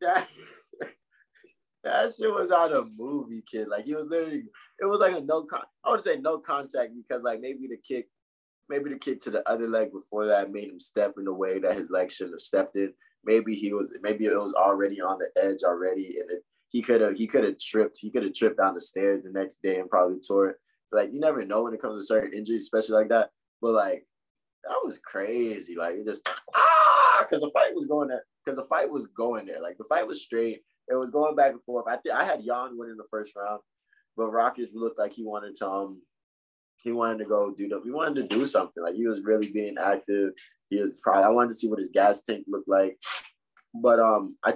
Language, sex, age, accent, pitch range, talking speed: English, male, 20-39, American, 100-135 Hz, 250 wpm